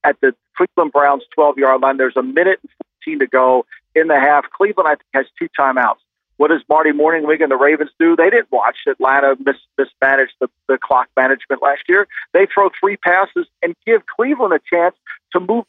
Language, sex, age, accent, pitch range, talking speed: English, male, 50-69, American, 155-250 Hz, 205 wpm